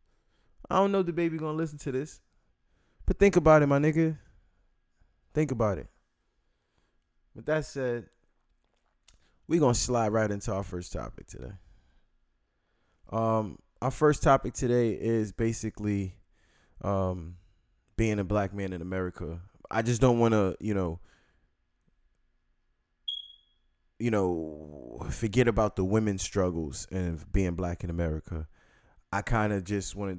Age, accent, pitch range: 20-39, American, 85-105 Hz